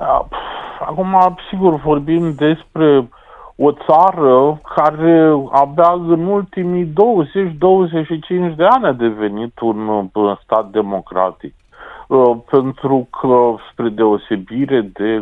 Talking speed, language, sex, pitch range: 90 wpm, Romanian, male, 105-135 Hz